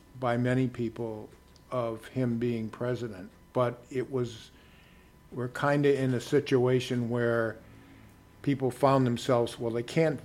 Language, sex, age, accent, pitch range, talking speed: English, male, 50-69, American, 110-130 Hz, 130 wpm